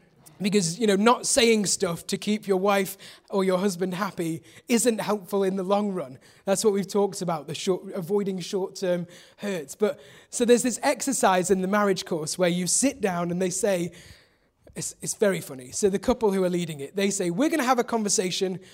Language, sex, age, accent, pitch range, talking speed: English, male, 20-39, British, 180-215 Hz, 210 wpm